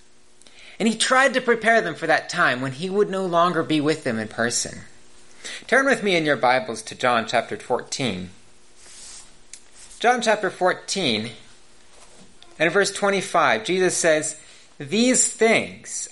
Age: 30-49